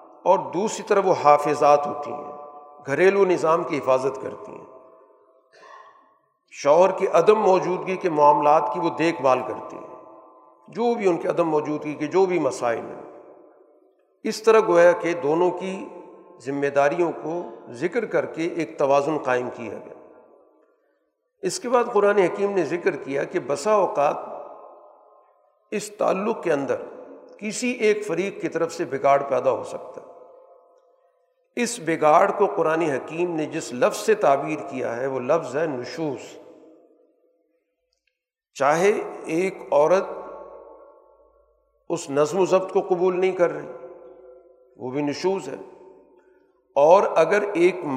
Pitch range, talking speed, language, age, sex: 150-205 Hz, 145 wpm, Urdu, 50-69, male